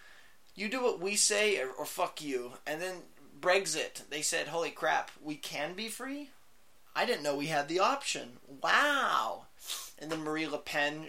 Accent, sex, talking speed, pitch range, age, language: American, male, 180 wpm, 150-205 Hz, 20-39, English